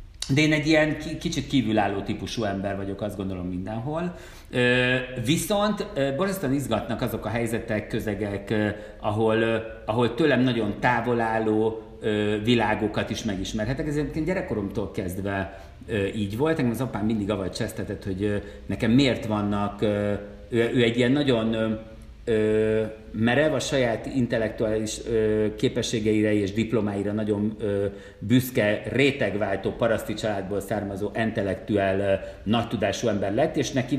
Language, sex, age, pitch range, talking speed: Hungarian, male, 50-69, 105-125 Hz, 125 wpm